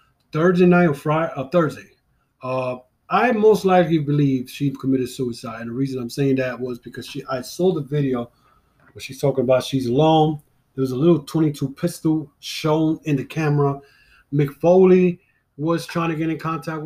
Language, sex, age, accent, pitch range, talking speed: English, male, 20-39, American, 130-155 Hz, 180 wpm